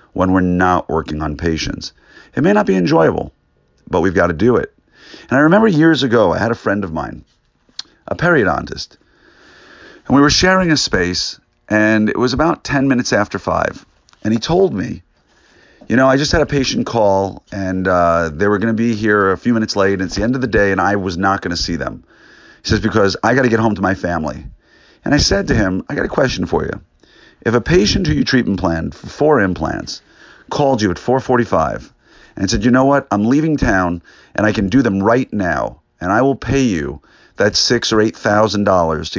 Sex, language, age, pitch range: male, English, 40-59, 90-120 Hz